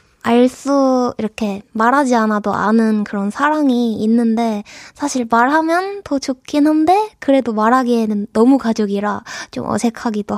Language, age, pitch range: Korean, 20-39, 215-295 Hz